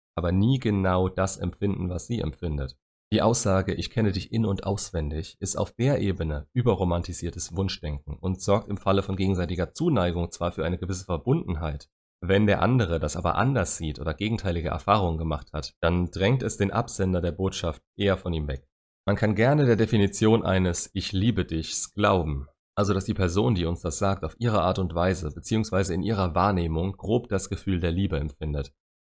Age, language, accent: 30-49, German, German